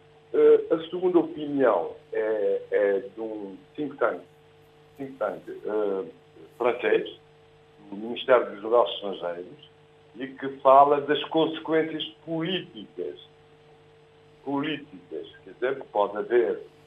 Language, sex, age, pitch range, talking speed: Portuguese, male, 60-79, 135-165 Hz, 95 wpm